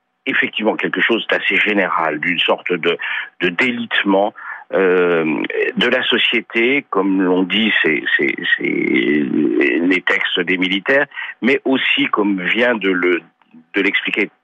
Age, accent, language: 50-69, French, French